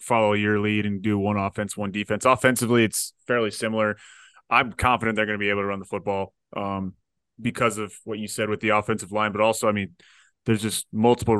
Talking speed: 215 wpm